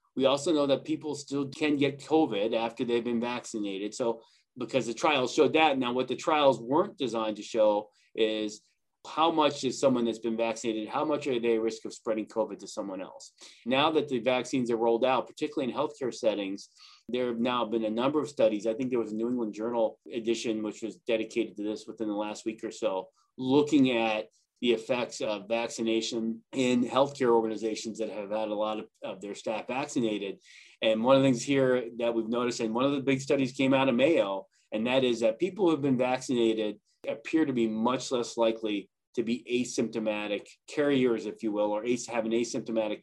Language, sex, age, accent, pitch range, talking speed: English, male, 30-49, American, 110-130 Hz, 210 wpm